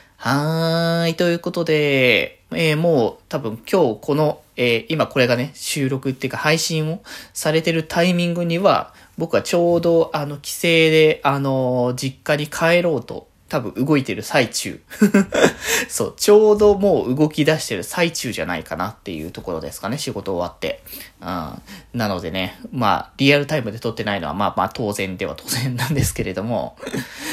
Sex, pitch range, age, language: male, 115-165 Hz, 20-39, Japanese